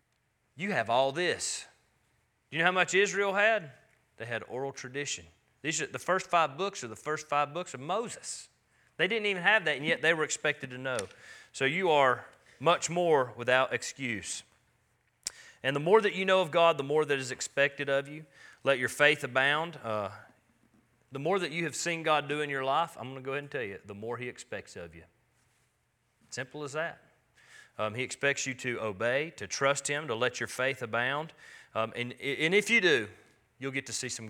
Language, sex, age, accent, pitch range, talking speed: English, male, 30-49, American, 115-155 Hz, 210 wpm